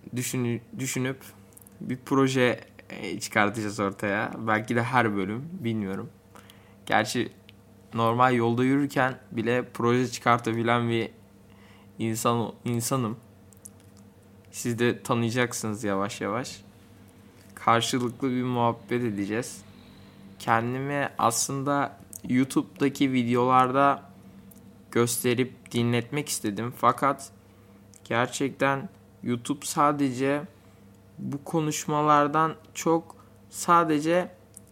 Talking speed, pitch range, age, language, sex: 75 wpm, 100-130 Hz, 20-39, Turkish, male